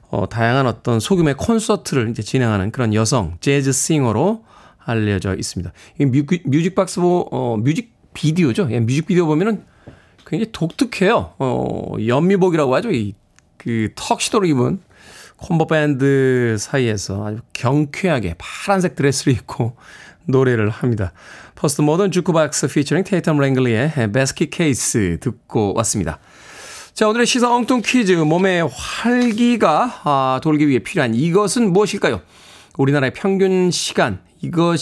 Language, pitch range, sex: Korean, 120-185 Hz, male